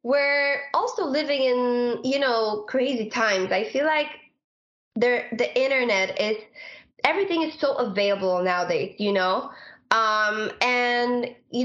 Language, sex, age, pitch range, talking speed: Greek, female, 20-39, 205-260 Hz, 125 wpm